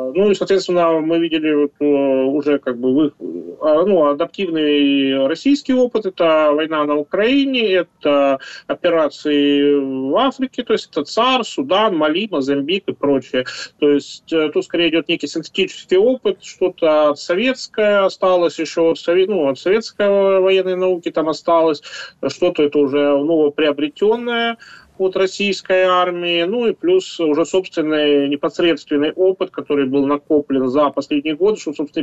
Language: Russian